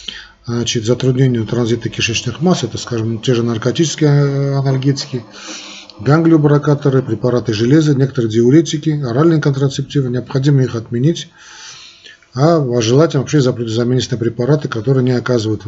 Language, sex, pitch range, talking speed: Russian, male, 115-140 Hz, 105 wpm